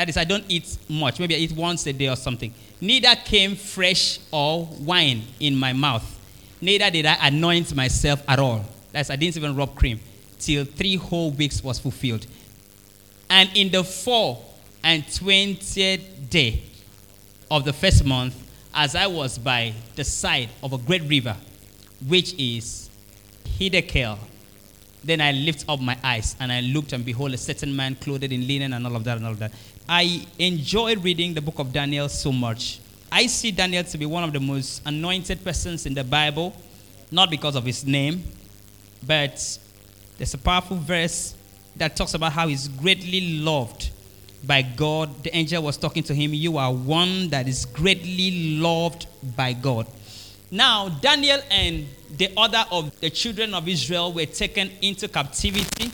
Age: 20-39